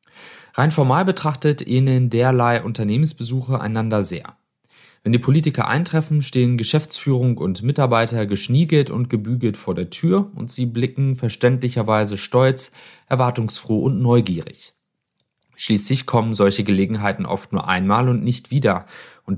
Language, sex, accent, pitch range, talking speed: German, male, German, 105-130 Hz, 125 wpm